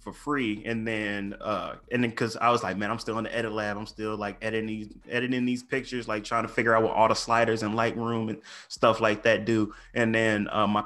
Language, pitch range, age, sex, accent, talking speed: English, 105-120 Hz, 20-39, male, American, 255 wpm